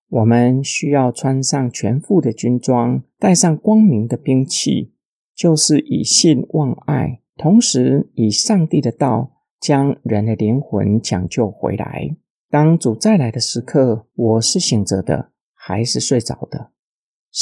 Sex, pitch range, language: male, 120-155 Hz, Chinese